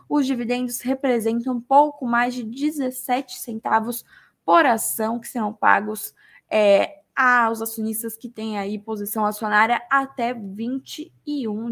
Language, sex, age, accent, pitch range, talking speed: Portuguese, female, 10-29, Brazilian, 225-270 Hz, 120 wpm